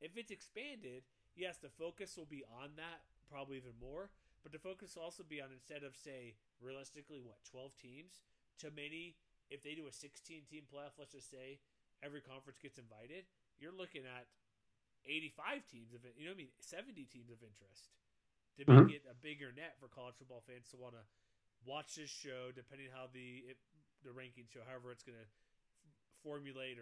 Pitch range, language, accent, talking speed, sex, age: 120-145 Hz, English, American, 195 wpm, male, 30-49